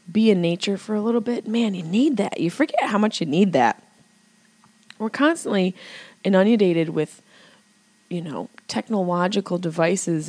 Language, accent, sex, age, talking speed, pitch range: English, American, female, 20-39, 150 wpm, 160-210 Hz